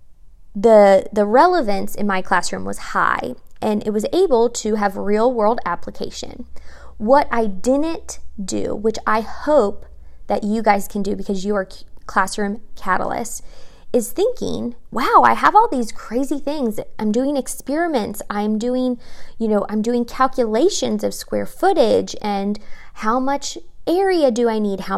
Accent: American